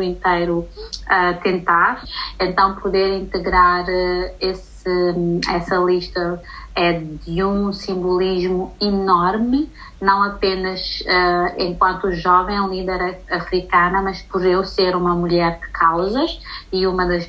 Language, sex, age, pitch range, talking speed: Portuguese, female, 20-39, 170-190 Hz, 120 wpm